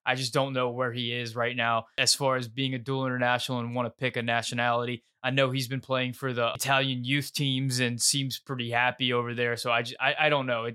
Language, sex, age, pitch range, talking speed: English, male, 20-39, 130-150 Hz, 255 wpm